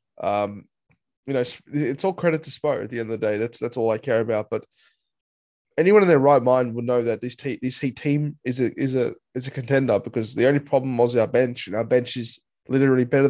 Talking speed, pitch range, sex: 245 wpm, 115-145 Hz, male